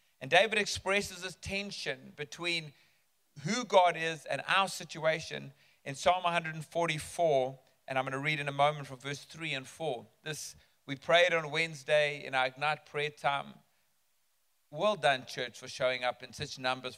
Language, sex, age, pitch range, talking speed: English, male, 40-59, 140-180 Hz, 165 wpm